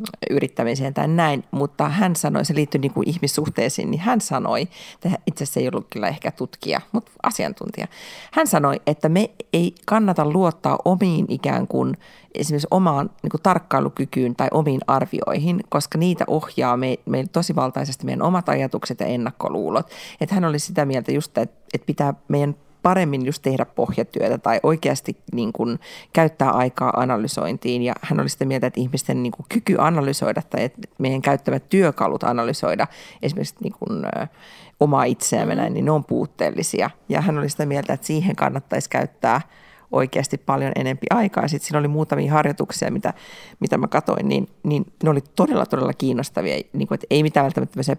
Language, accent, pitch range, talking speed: Finnish, native, 135-180 Hz, 170 wpm